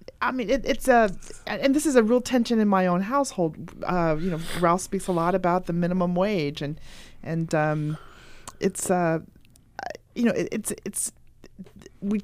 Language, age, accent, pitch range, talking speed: English, 40-59, American, 160-210 Hz, 180 wpm